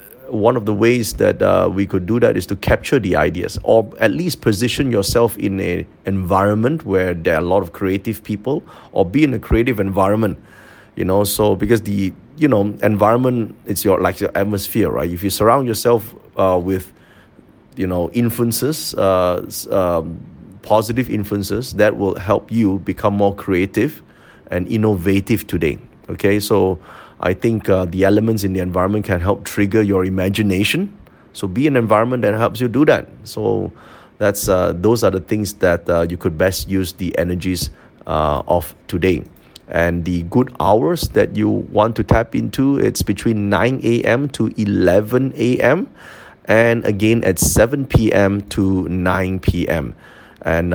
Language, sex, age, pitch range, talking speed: English, male, 30-49, 95-115 Hz, 165 wpm